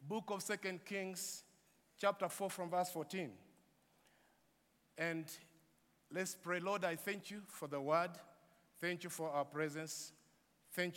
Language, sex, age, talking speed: English, male, 50-69, 135 wpm